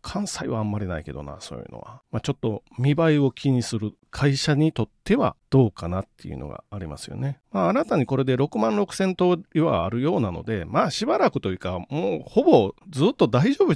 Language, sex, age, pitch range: Japanese, male, 40-59, 115-185 Hz